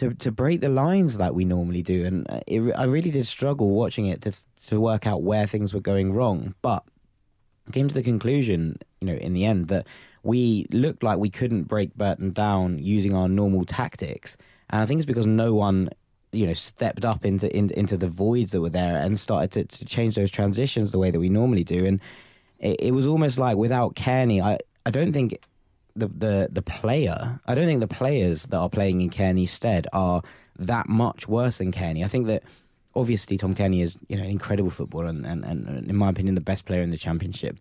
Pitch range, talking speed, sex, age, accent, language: 95-115 Hz, 220 wpm, male, 20-39, British, English